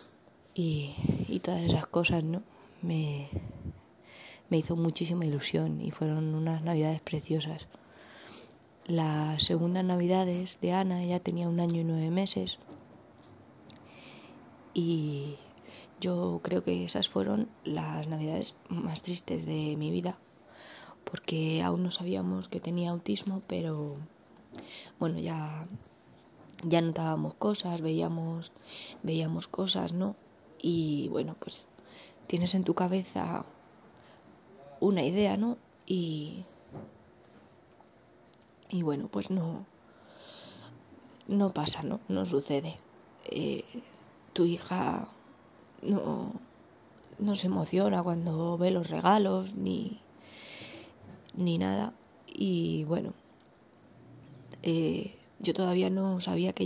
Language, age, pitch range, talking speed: English, 20-39, 155-185 Hz, 105 wpm